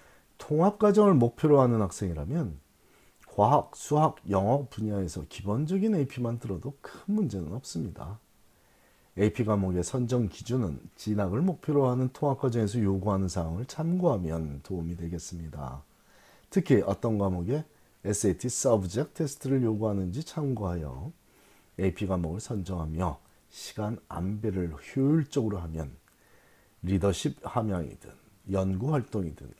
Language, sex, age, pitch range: Korean, male, 40-59, 90-135 Hz